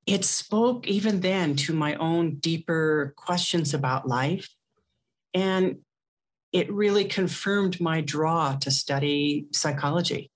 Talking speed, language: 115 wpm, English